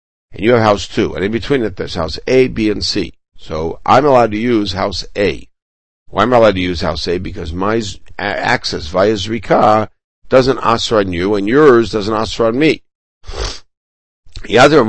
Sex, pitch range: male, 90-110 Hz